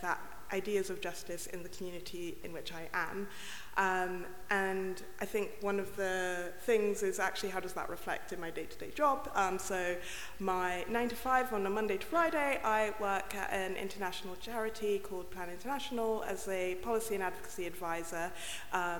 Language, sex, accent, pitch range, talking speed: English, female, British, 175-200 Hz, 175 wpm